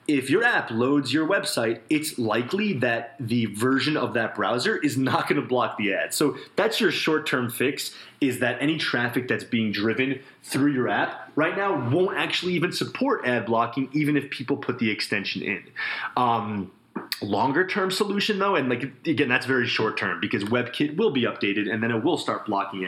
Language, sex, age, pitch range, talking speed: English, male, 30-49, 115-150 Hz, 190 wpm